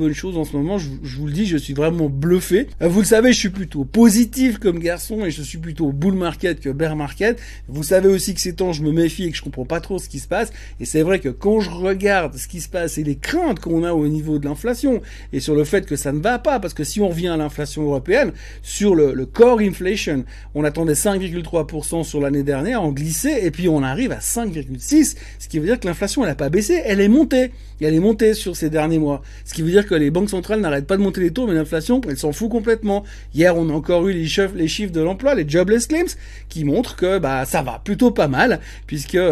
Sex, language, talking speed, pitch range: male, French, 255 wpm, 150-205 Hz